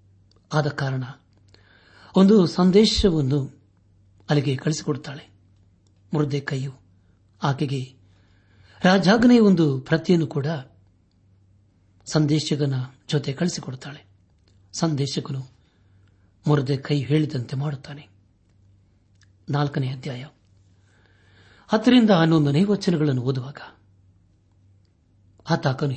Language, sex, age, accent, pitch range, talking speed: Kannada, male, 60-79, native, 100-160 Hz, 55 wpm